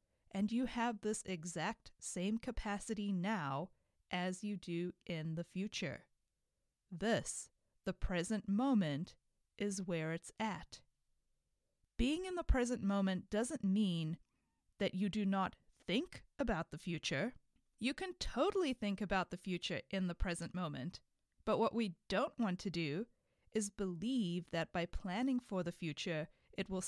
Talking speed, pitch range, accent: 145 wpm, 175-230 Hz, American